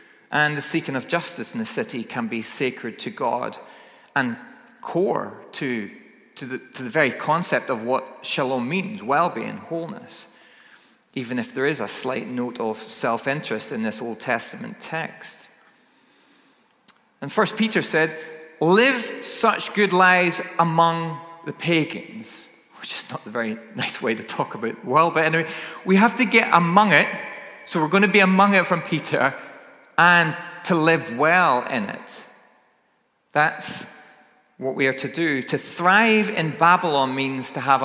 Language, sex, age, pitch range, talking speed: English, male, 40-59, 140-185 Hz, 160 wpm